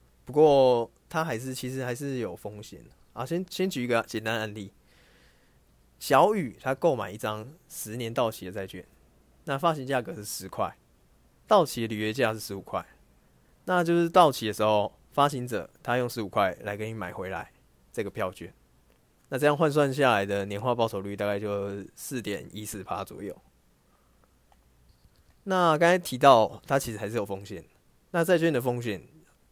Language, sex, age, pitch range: English, male, 20-39, 95-135 Hz